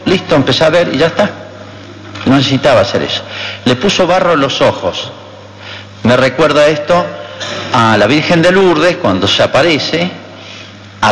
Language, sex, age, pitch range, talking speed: Spanish, male, 50-69, 105-175 Hz, 155 wpm